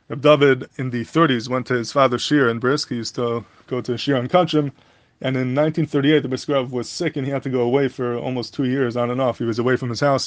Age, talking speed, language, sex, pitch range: 20-39, 255 wpm, English, male, 120-145 Hz